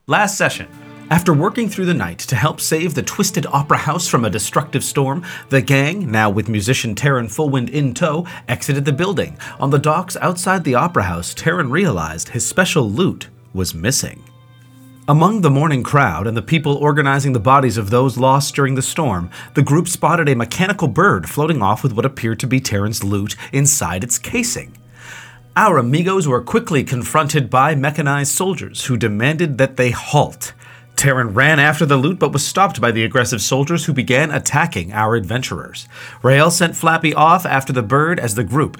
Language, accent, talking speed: English, American, 180 wpm